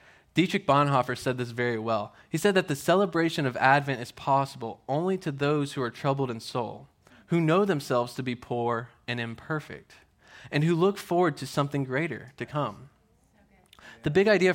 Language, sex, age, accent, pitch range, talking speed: English, male, 20-39, American, 125-155 Hz, 175 wpm